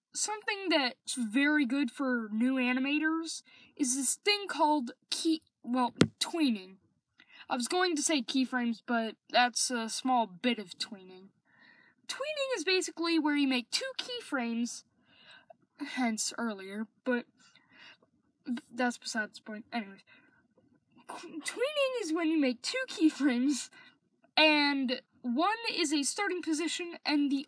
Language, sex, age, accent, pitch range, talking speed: English, female, 10-29, American, 245-325 Hz, 125 wpm